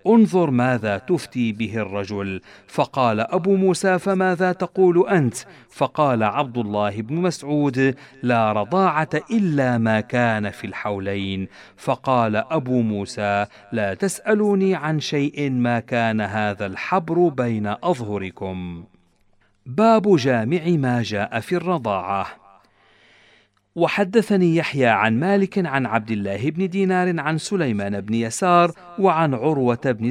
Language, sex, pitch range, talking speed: Arabic, male, 110-165 Hz, 115 wpm